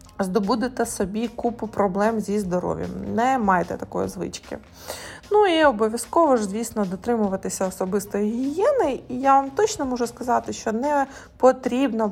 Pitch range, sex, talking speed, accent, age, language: 195-255 Hz, female, 135 wpm, native, 20-39, Ukrainian